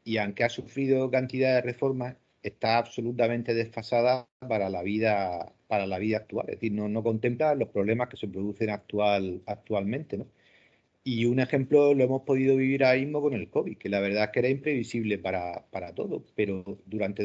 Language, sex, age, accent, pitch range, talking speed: Spanish, male, 40-59, Spanish, 105-130 Hz, 190 wpm